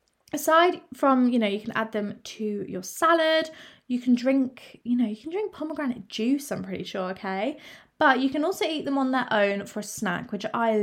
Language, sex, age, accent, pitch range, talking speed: English, female, 20-39, British, 210-280 Hz, 215 wpm